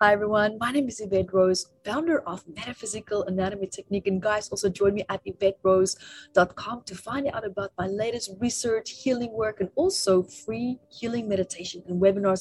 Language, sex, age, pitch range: English, female, 30-49, 180-225 Hz